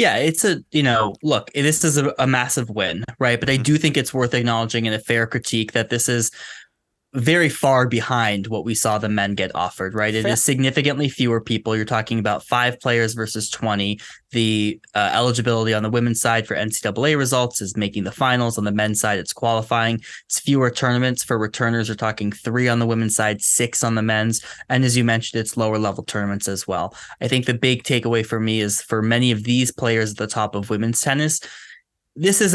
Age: 20-39